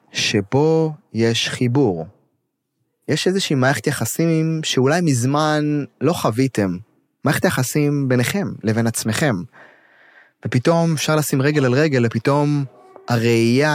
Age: 20-39